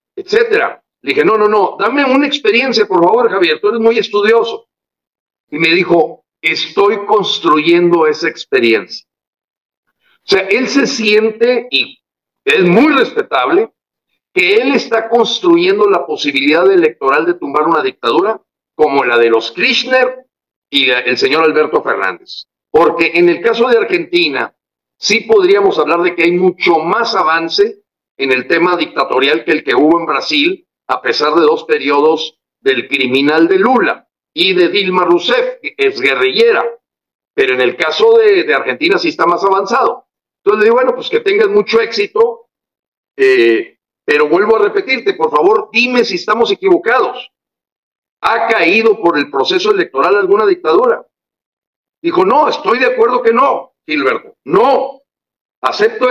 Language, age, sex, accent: Spanish, 50-69, male, Mexican